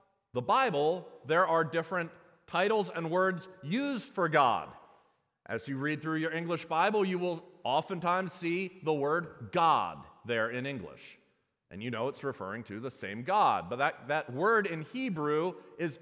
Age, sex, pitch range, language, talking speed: 40-59, male, 145-195 Hz, English, 165 wpm